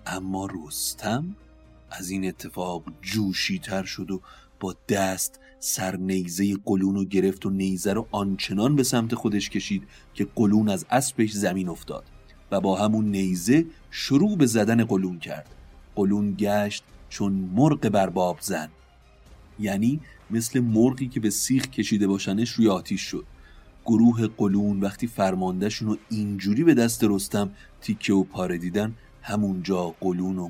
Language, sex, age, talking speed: Persian, male, 30-49, 140 wpm